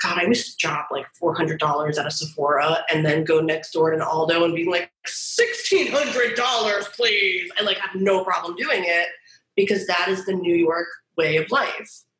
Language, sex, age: English, female, 20-39